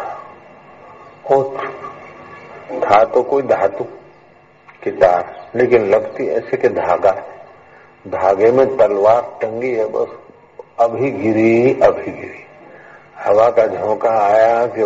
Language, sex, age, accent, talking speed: Hindi, male, 50-69, native, 100 wpm